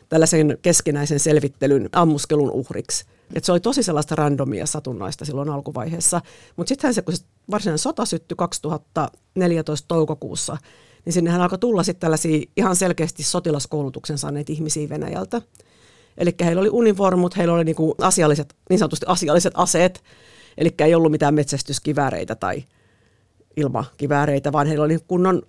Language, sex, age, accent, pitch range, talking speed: Finnish, female, 50-69, native, 145-175 Hz, 140 wpm